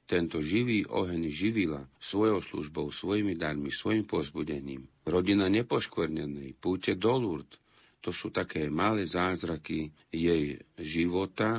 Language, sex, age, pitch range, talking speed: Slovak, male, 50-69, 75-95 Hz, 110 wpm